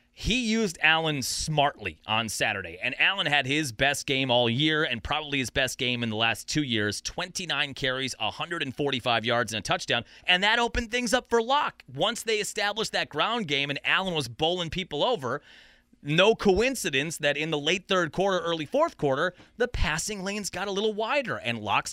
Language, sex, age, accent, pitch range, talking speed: English, male, 30-49, American, 135-180 Hz, 190 wpm